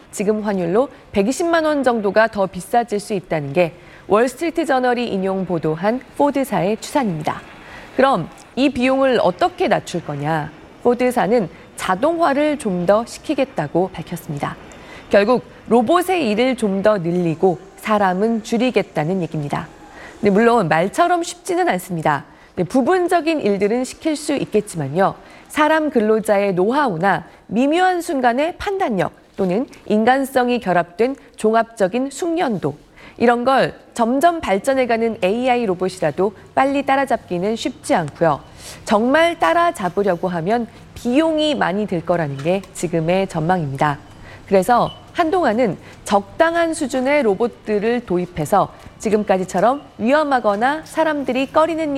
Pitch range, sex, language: 185-270 Hz, female, Korean